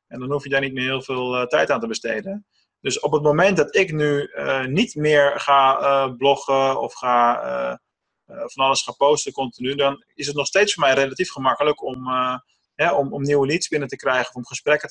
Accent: Dutch